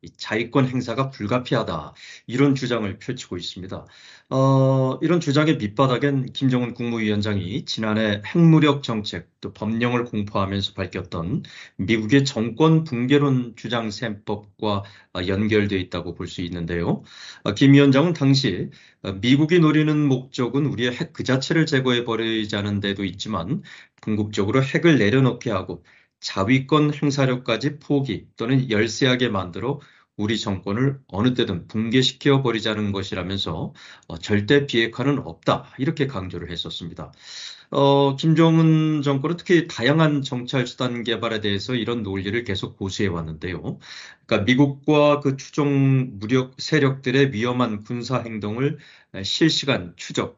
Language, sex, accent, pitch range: Korean, male, native, 105-140 Hz